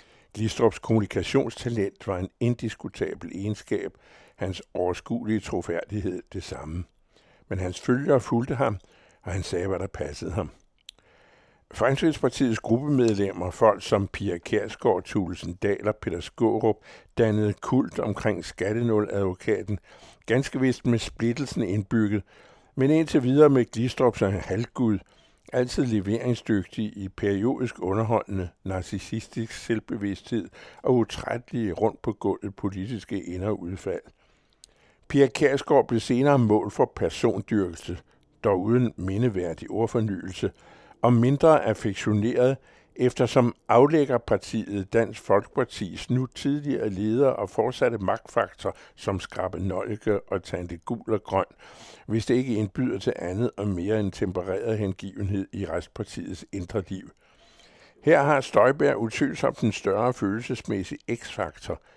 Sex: male